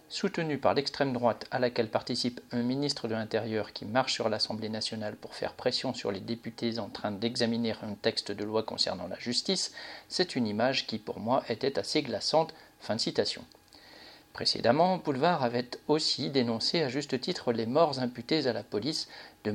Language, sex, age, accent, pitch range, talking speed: French, male, 50-69, French, 115-145 Hz, 180 wpm